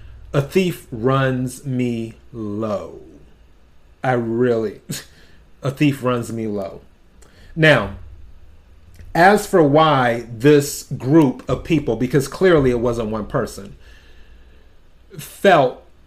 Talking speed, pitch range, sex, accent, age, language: 100 wpm, 100-160 Hz, male, American, 30-49, English